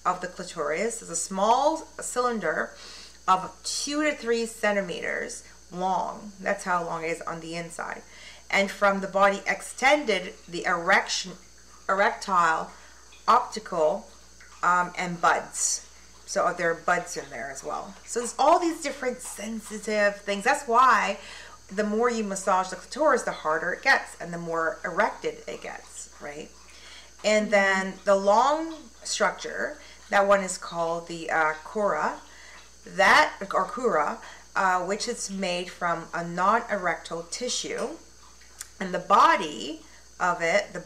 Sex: female